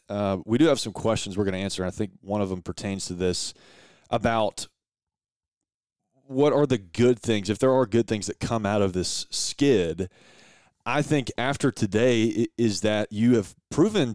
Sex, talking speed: male, 190 wpm